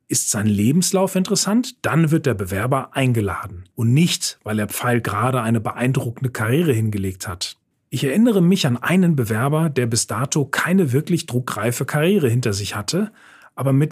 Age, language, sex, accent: 40-59, German, male, German